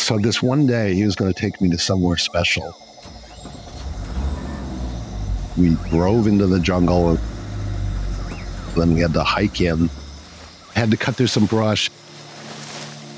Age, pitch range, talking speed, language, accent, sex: 50-69, 75-105 Hz, 135 wpm, English, American, male